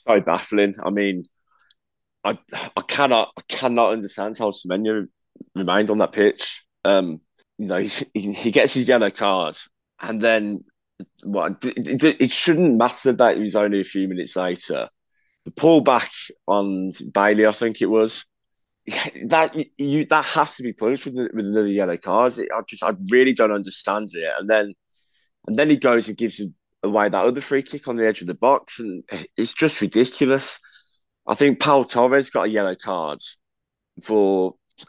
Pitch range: 95-120 Hz